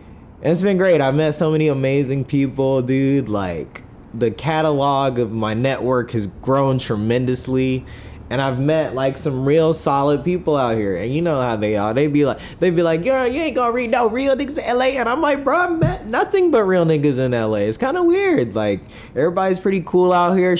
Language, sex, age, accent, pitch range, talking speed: English, male, 20-39, American, 115-150 Hz, 210 wpm